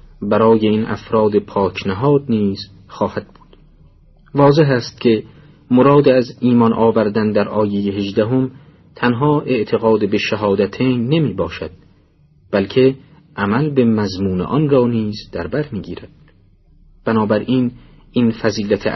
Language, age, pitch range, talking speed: Persian, 40-59, 95-130 Hz, 115 wpm